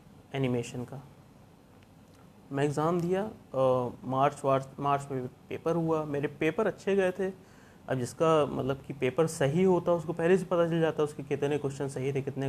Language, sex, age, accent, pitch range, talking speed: Hindi, male, 30-49, native, 130-160 Hz, 185 wpm